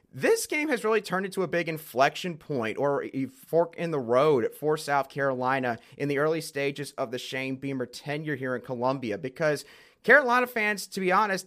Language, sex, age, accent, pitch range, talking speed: English, male, 30-49, American, 140-185 Hz, 195 wpm